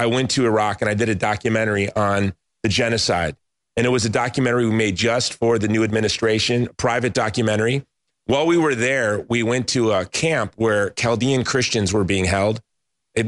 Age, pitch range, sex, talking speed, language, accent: 30-49, 110-135 Hz, male, 195 wpm, English, American